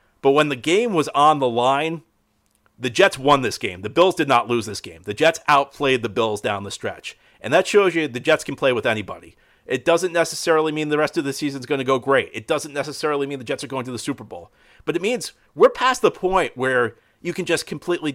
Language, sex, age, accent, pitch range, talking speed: English, male, 40-59, American, 135-170 Hz, 250 wpm